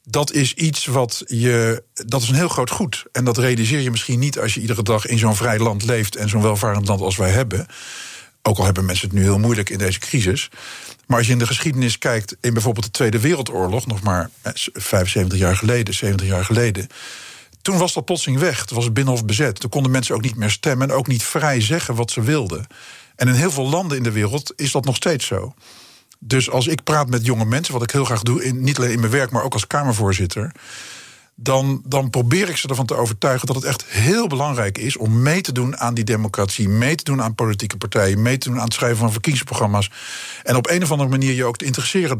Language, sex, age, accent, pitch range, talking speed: Dutch, male, 50-69, Dutch, 110-135 Hz, 240 wpm